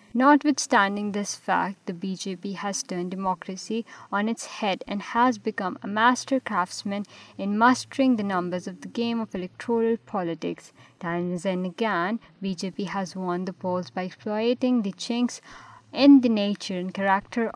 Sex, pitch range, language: female, 190-235 Hz, Urdu